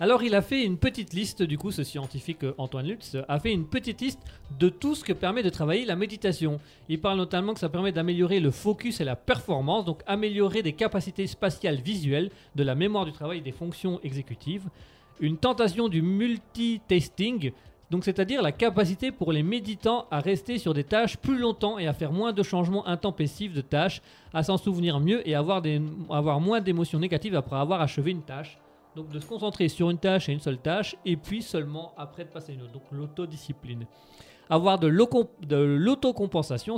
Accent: French